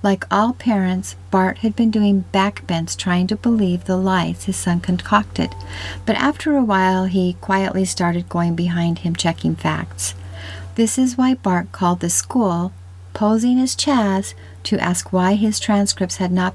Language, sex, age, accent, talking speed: English, female, 50-69, American, 165 wpm